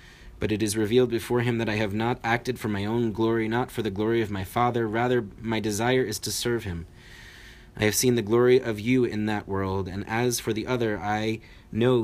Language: English